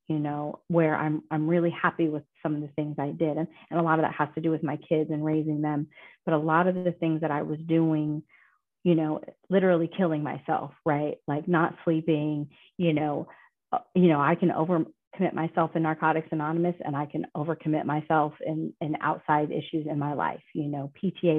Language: English